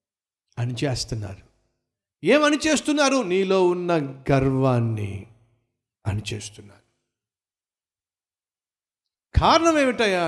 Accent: native